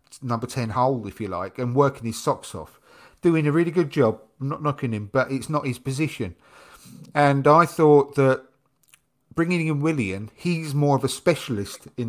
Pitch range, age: 120-160 Hz, 40-59